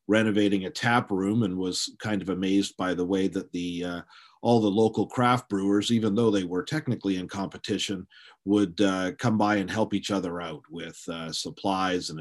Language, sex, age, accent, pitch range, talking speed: English, male, 40-59, American, 90-105 Hz, 195 wpm